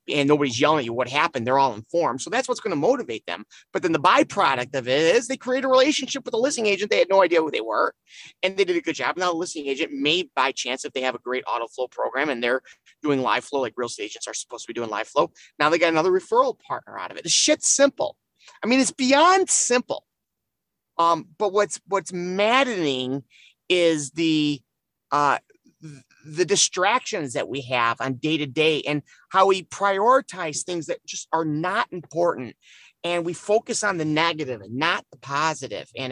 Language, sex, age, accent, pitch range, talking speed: English, male, 30-49, American, 135-190 Hz, 215 wpm